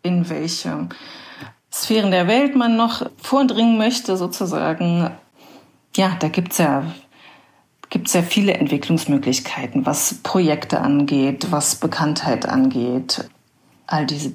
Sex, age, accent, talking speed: female, 40-59, German, 115 wpm